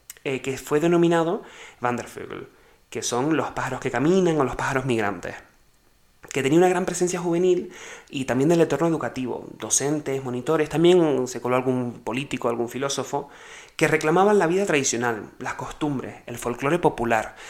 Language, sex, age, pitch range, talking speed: English, male, 30-49, 120-160 Hz, 160 wpm